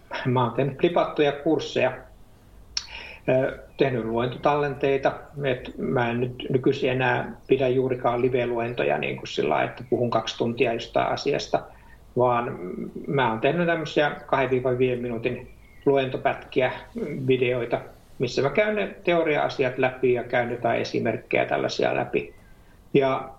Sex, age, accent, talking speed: male, 60-79, native, 120 wpm